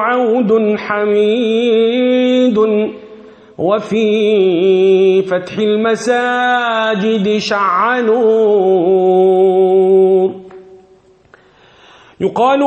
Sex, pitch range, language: male, 215-275 Hz, Arabic